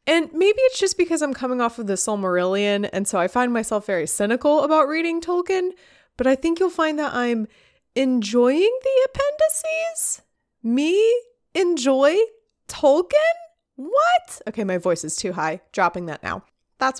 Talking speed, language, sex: 160 wpm, English, female